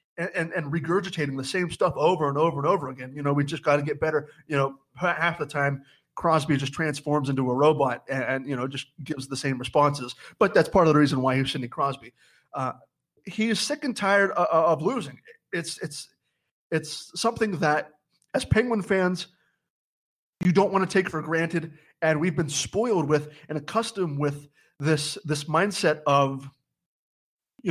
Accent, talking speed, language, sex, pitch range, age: American, 190 wpm, English, male, 145-185 Hz, 30-49